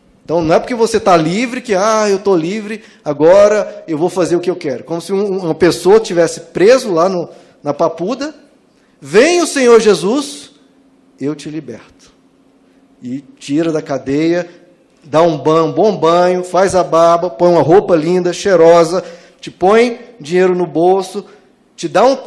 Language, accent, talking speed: Portuguese, Brazilian, 170 wpm